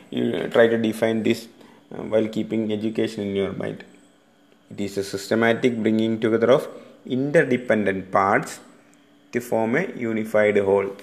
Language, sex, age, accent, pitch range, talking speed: English, male, 30-49, Indian, 110-135 Hz, 135 wpm